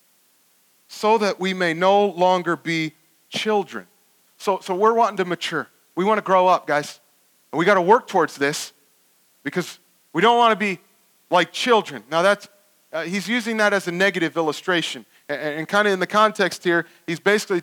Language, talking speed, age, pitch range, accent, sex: English, 185 wpm, 40-59, 170-230 Hz, American, male